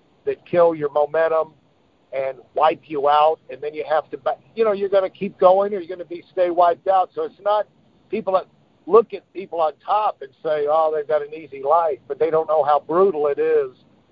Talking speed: 235 wpm